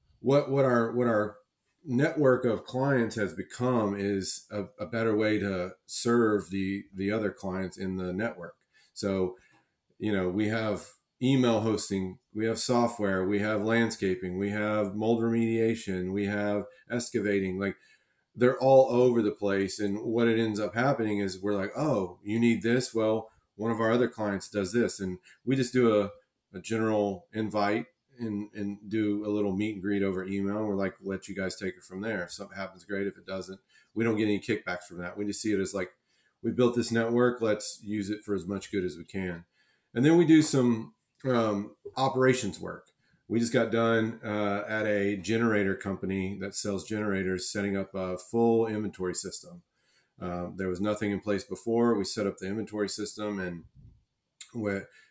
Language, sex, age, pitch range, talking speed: English, male, 40-59, 100-115 Hz, 190 wpm